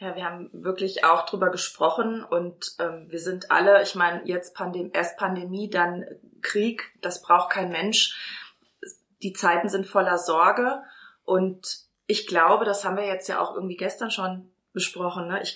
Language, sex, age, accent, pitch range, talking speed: German, female, 20-39, German, 175-205 Hz, 160 wpm